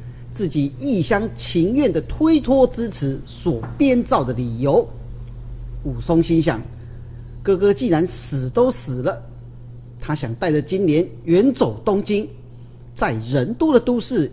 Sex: male